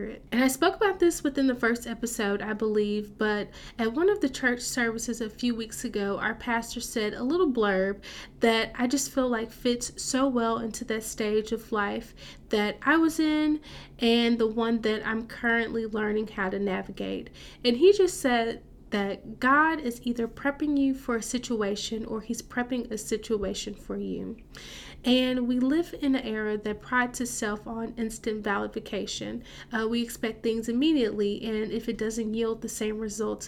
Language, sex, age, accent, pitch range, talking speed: English, female, 30-49, American, 220-250 Hz, 180 wpm